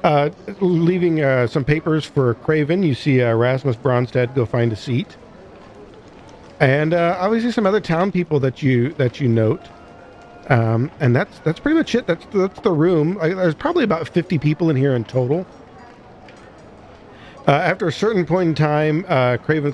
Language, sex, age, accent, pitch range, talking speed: English, male, 50-69, American, 115-150 Hz, 175 wpm